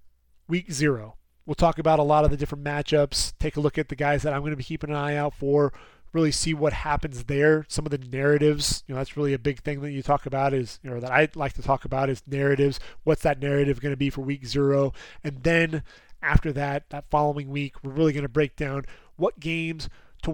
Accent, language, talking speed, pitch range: American, English, 245 wpm, 140-160 Hz